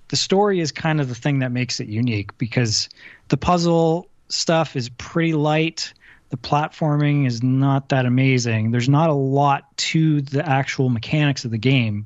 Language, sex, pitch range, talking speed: English, male, 120-140 Hz, 175 wpm